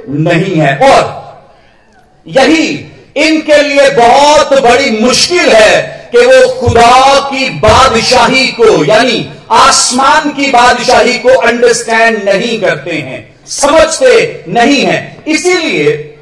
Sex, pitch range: male, 230-300 Hz